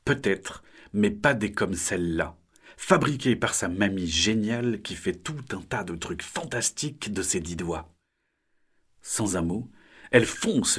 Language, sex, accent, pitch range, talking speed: French, male, French, 85-120 Hz, 155 wpm